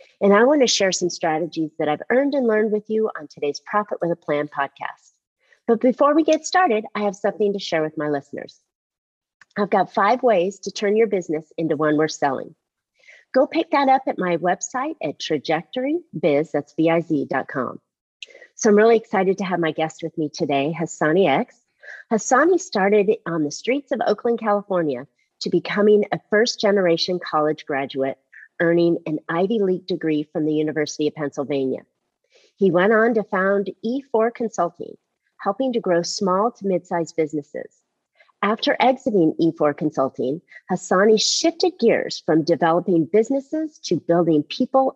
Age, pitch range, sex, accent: 40-59, 155-225 Hz, female, American